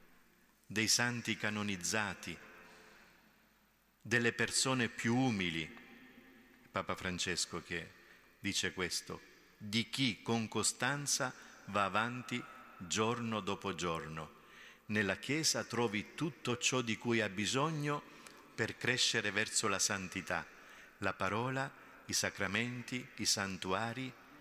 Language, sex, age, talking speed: Italian, male, 50-69, 100 wpm